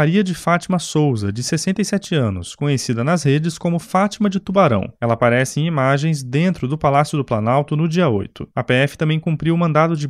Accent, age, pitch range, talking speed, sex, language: Brazilian, 20-39, 130-175 Hz, 195 wpm, male, Portuguese